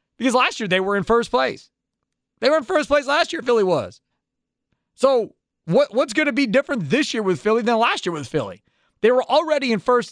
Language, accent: English, American